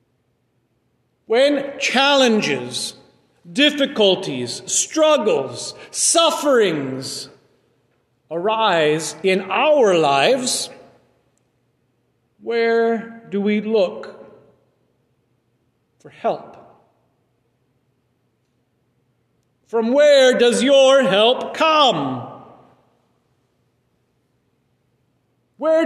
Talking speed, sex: 50 wpm, male